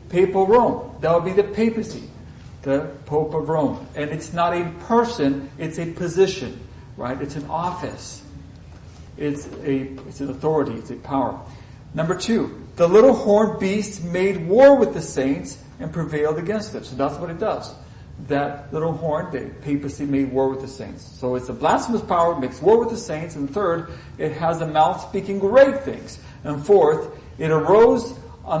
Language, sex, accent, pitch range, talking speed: English, male, American, 140-195 Hz, 180 wpm